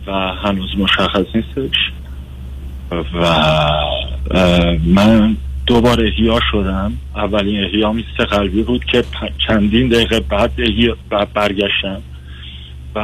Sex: male